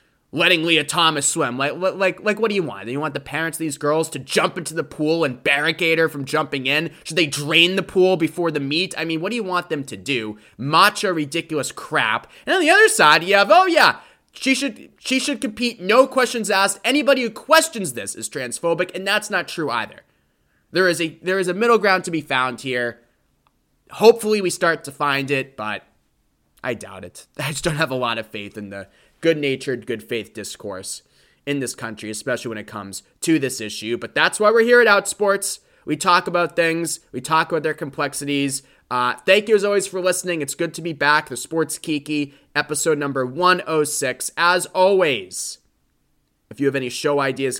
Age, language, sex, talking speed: 20-39, English, male, 210 wpm